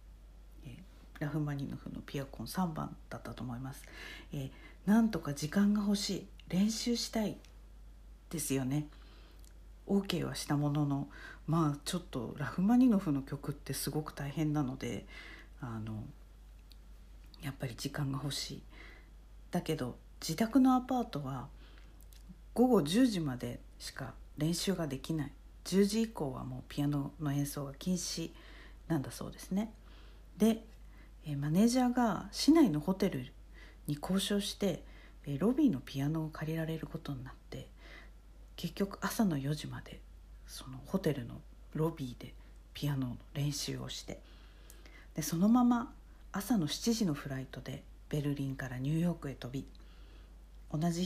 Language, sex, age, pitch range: Japanese, female, 50-69, 135-190 Hz